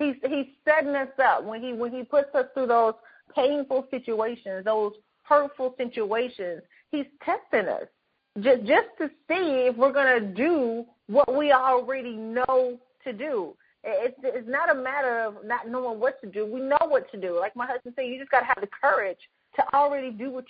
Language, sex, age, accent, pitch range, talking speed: English, female, 30-49, American, 225-275 Hz, 195 wpm